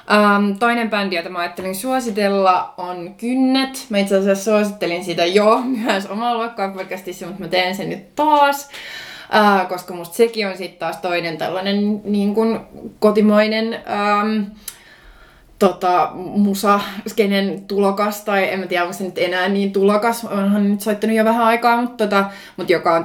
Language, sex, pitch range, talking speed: Finnish, female, 175-215 Hz, 155 wpm